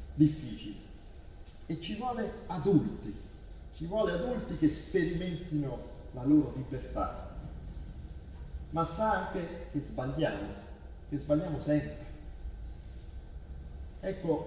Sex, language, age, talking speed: male, Italian, 40-59, 90 wpm